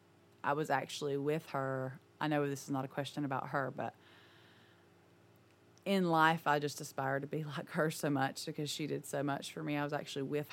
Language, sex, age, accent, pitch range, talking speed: English, female, 30-49, American, 140-160 Hz, 210 wpm